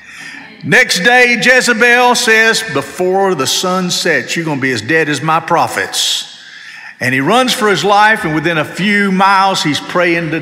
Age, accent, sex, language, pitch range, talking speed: 50-69, American, male, English, 160-230 Hz, 175 wpm